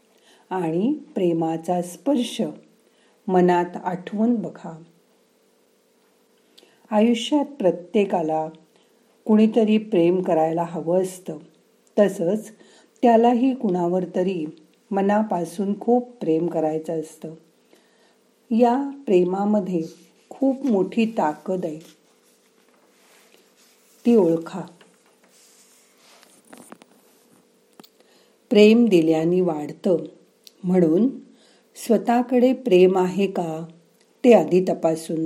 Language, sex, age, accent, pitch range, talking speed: Marathi, female, 50-69, native, 170-230 Hz, 70 wpm